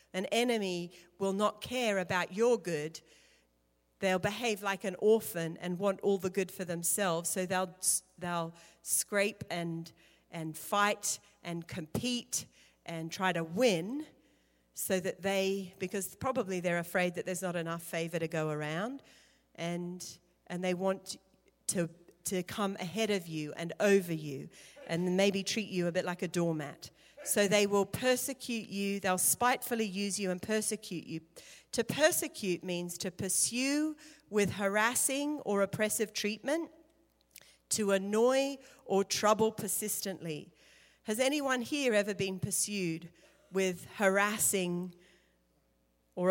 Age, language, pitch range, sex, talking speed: 40-59, English, 170-210 Hz, female, 135 wpm